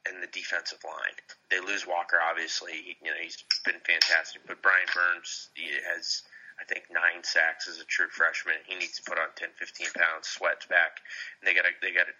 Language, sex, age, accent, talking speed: English, male, 30-49, American, 210 wpm